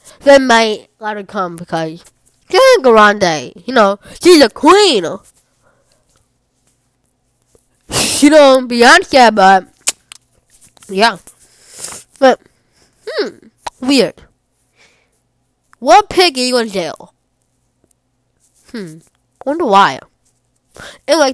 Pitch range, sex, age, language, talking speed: 215-305 Hz, female, 20-39, English, 100 wpm